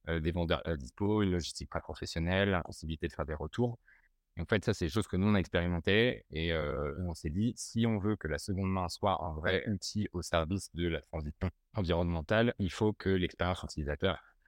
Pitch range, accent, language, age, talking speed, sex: 80-100 Hz, French, French, 30-49, 220 wpm, male